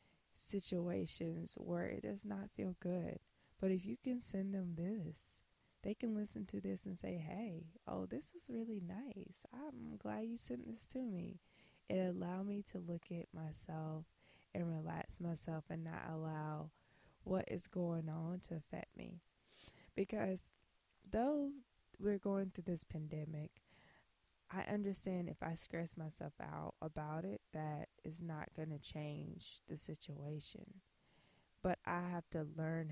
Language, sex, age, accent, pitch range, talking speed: English, female, 20-39, American, 155-190 Hz, 150 wpm